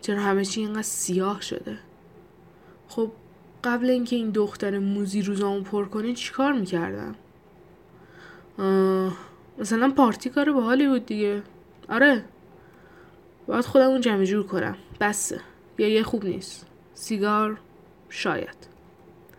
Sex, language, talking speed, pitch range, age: female, Persian, 120 wpm, 185-230 Hz, 10-29